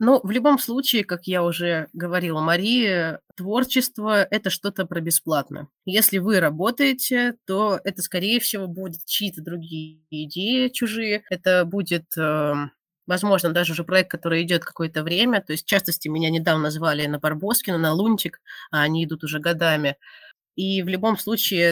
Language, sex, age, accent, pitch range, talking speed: Russian, female, 20-39, native, 165-215 Hz, 160 wpm